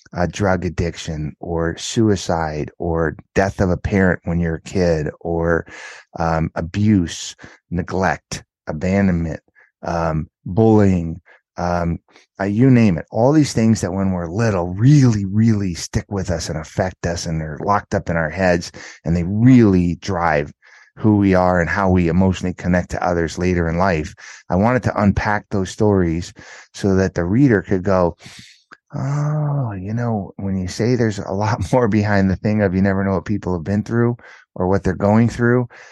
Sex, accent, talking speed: male, American, 175 wpm